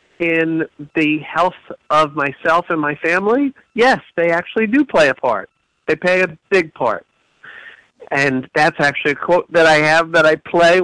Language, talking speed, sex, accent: English, 170 wpm, male, American